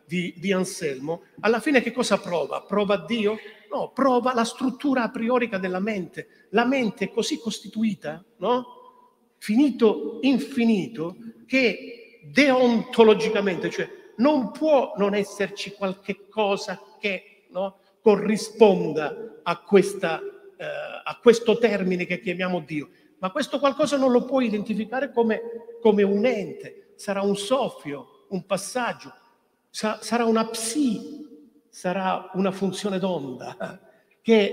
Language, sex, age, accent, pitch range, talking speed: Italian, male, 50-69, native, 200-245 Hz, 125 wpm